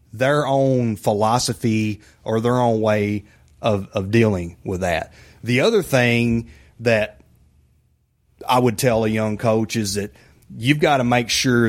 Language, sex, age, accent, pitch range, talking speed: English, male, 30-49, American, 100-120 Hz, 150 wpm